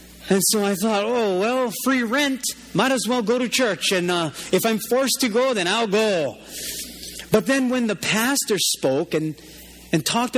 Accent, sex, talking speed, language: American, male, 190 wpm, English